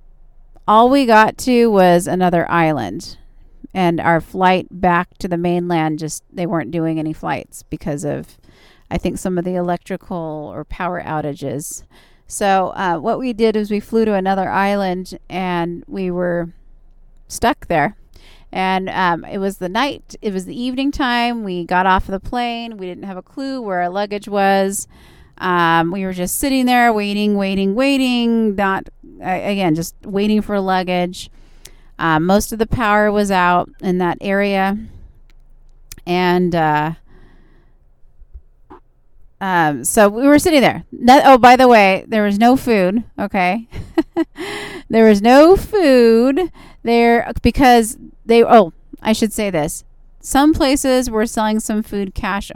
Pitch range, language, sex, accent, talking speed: 175-230 Hz, English, female, American, 150 wpm